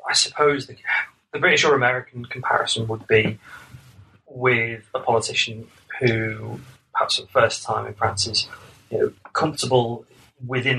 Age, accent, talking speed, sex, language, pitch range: 30-49, British, 145 wpm, male, English, 110-125 Hz